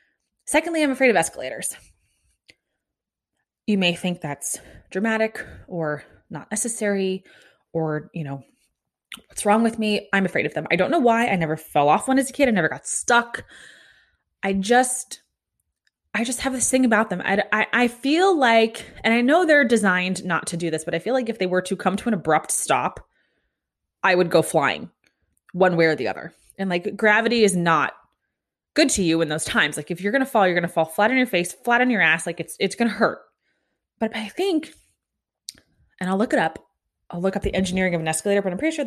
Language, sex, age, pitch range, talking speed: English, female, 20-39, 170-240 Hz, 215 wpm